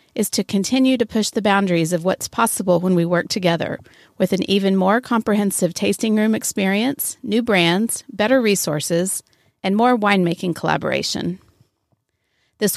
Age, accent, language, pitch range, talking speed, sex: 40-59, American, English, 175-215 Hz, 145 wpm, female